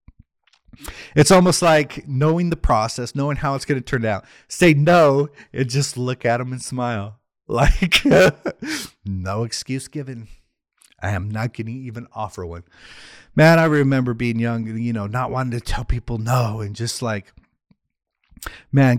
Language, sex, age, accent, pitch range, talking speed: English, male, 30-49, American, 110-140 Hz, 160 wpm